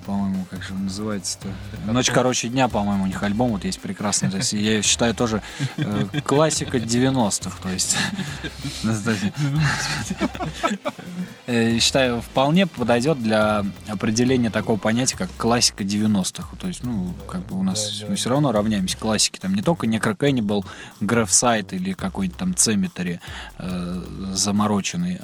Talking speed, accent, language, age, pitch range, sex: 120 wpm, native, Russian, 20-39, 100-145 Hz, male